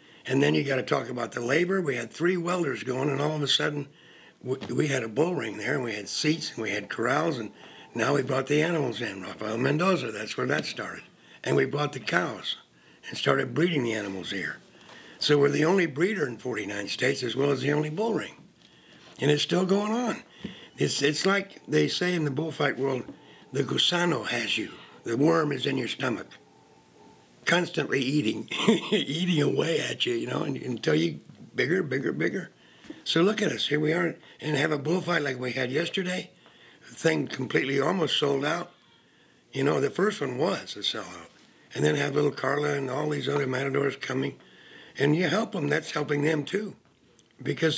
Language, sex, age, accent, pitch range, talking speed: English, male, 60-79, American, 135-165 Hz, 200 wpm